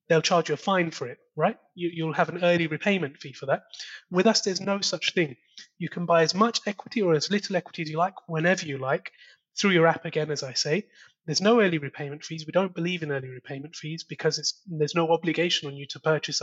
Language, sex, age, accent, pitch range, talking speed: English, male, 30-49, British, 150-195 Hz, 245 wpm